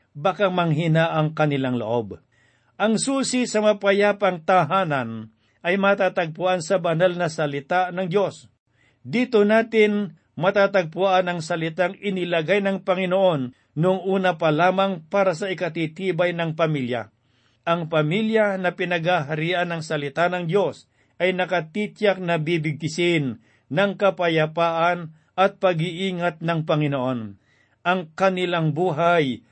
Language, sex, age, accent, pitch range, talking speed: Filipino, male, 50-69, native, 155-190 Hz, 110 wpm